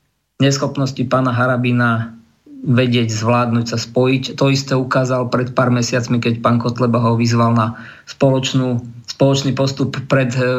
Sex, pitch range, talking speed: male, 120-135 Hz, 135 wpm